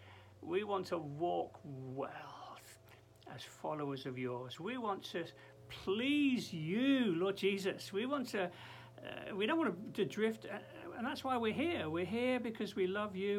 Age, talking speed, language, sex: 60-79, 160 wpm, English, male